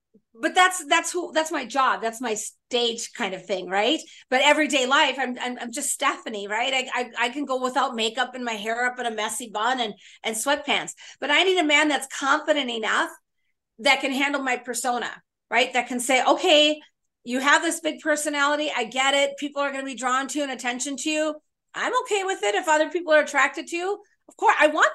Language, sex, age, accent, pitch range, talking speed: English, female, 40-59, American, 245-305 Hz, 225 wpm